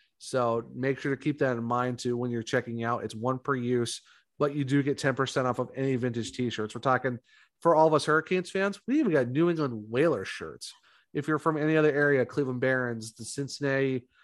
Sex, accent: male, American